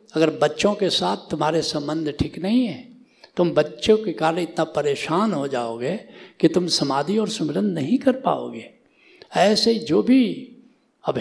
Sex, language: male, Hindi